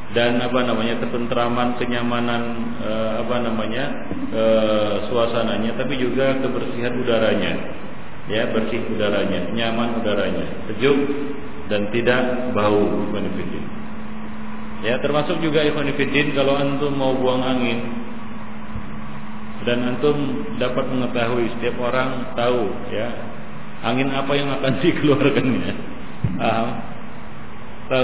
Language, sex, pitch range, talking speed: Malay, male, 110-130 Hz, 105 wpm